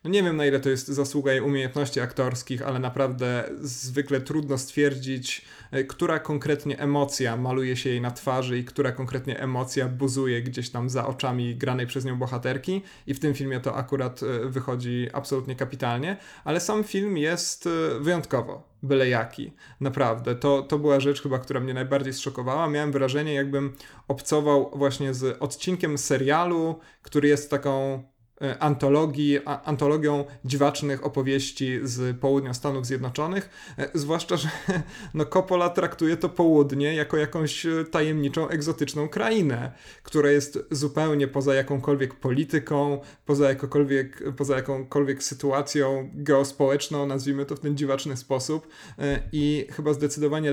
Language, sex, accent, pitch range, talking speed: Polish, male, native, 135-150 Hz, 135 wpm